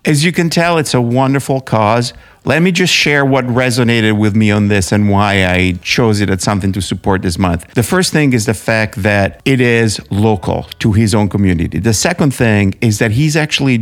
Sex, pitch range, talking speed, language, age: male, 105-130 Hz, 215 wpm, English, 50-69